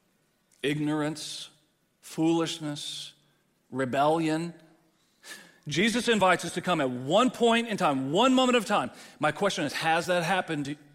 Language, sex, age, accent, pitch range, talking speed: English, male, 40-59, American, 150-215 Hz, 125 wpm